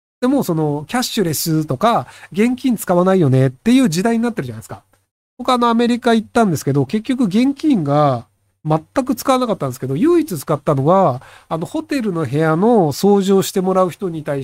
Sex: male